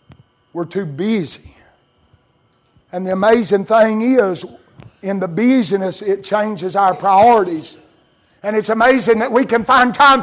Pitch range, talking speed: 150-240 Hz, 135 wpm